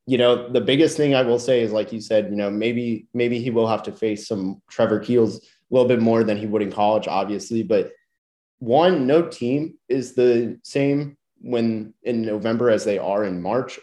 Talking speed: 215 wpm